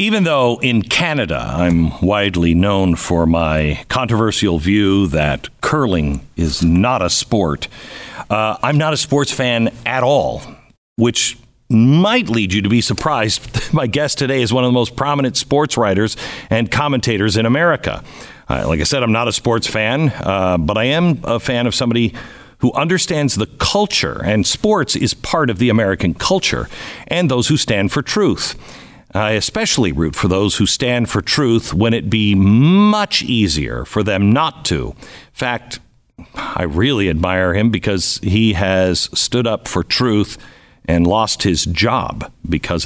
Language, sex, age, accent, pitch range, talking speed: English, male, 50-69, American, 100-135 Hz, 165 wpm